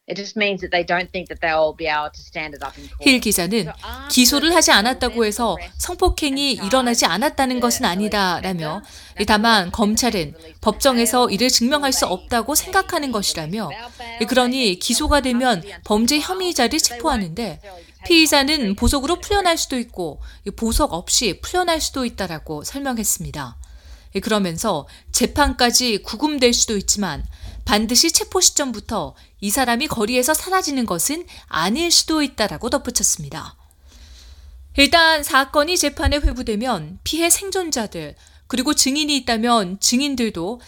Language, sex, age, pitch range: Korean, female, 30-49, 190-280 Hz